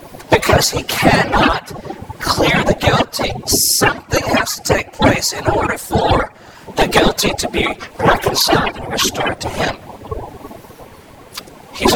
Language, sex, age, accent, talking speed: English, male, 50-69, American, 120 wpm